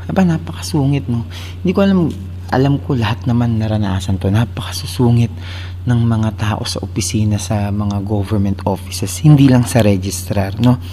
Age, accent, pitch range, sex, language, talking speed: 20-39, native, 95-135 Hz, male, Filipino, 155 wpm